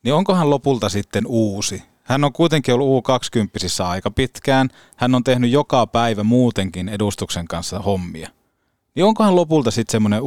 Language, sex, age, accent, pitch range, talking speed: Finnish, male, 30-49, native, 100-130 Hz, 160 wpm